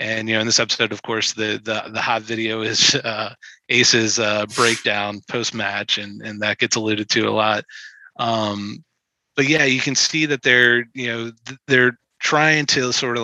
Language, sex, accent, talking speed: English, male, American, 195 wpm